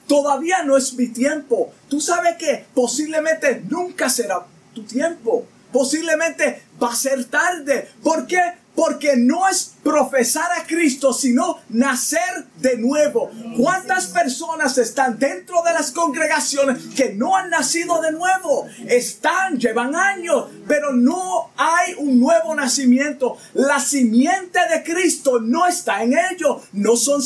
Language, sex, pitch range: Spanish, male, 250-335 Hz